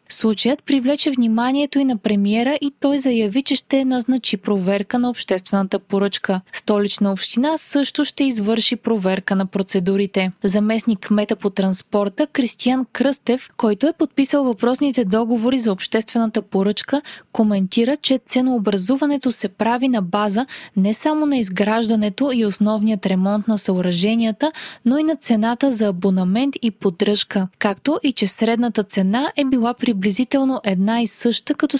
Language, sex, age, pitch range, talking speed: Bulgarian, female, 20-39, 205-260 Hz, 140 wpm